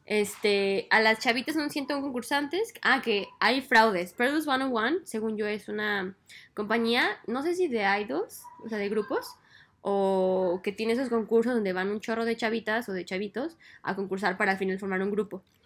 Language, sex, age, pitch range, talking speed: Spanish, female, 10-29, 195-260 Hz, 190 wpm